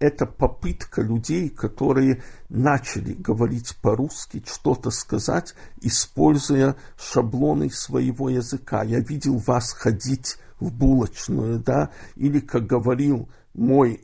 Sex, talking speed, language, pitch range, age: male, 105 wpm, Russian, 115-145 Hz, 50-69